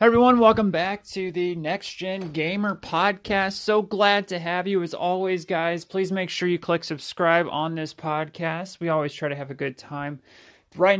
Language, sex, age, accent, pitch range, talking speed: English, male, 30-49, American, 135-175 Hz, 190 wpm